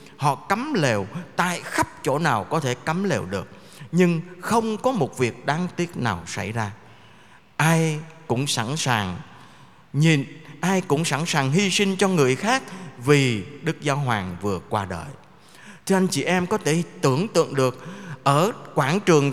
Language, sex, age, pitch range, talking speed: Vietnamese, male, 20-39, 135-190 Hz, 170 wpm